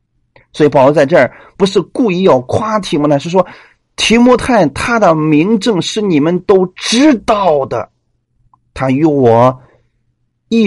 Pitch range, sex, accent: 120-180 Hz, male, native